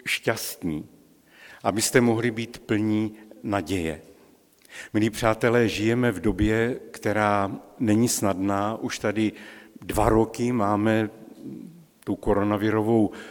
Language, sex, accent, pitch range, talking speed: Czech, male, native, 105-125 Hz, 95 wpm